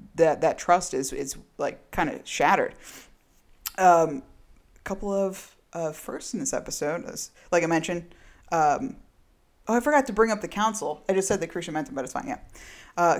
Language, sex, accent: English, female, American